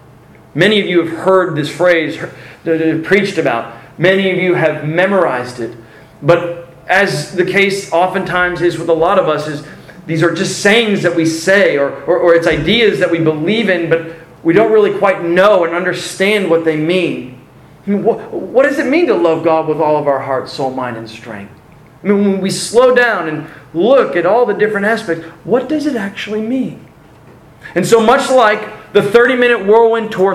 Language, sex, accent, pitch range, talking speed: English, male, American, 145-190 Hz, 200 wpm